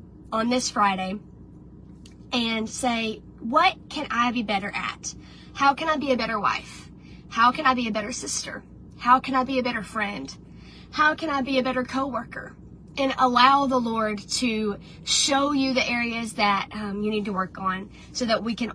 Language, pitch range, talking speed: English, 195-235 Hz, 190 wpm